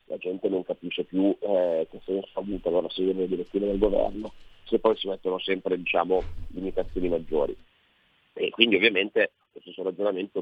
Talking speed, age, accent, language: 175 wpm, 40-59, native, Italian